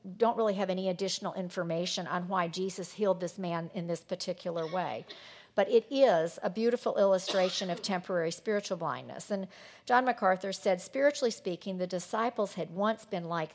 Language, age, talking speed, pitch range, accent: English, 50-69, 170 wpm, 165-205 Hz, American